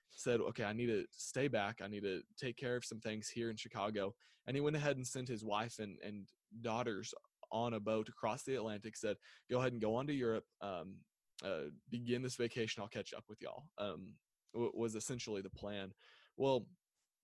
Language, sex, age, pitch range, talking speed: English, male, 20-39, 110-125 Hz, 205 wpm